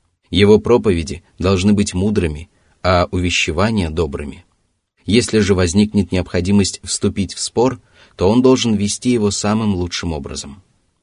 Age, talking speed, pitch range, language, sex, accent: 30-49, 125 wpm, 85-105 Hz, Russian, male, native